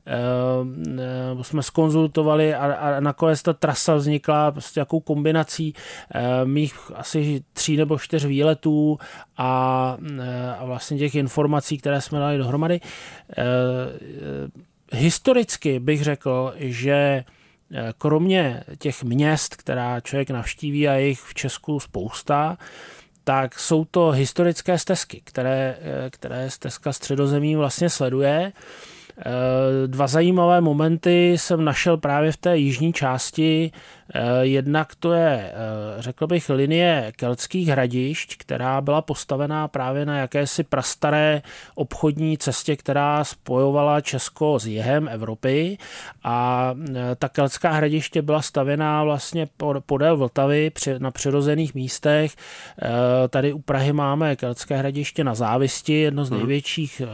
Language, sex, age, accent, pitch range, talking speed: Czech, male, 20-39, native, 130-155 Hz, 110 wpm